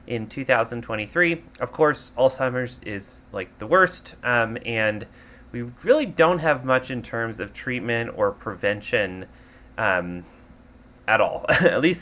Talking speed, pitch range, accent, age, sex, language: 135 wpm, 110-140 Hz, American, 30-49, male, English